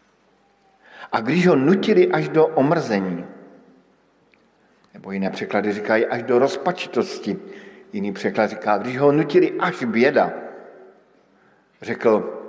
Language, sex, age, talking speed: Slovak, male, 60-79, 110 wpm